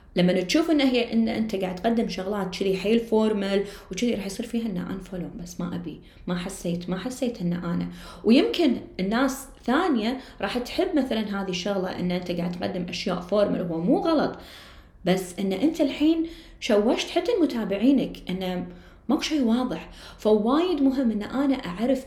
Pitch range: 185-245 Hz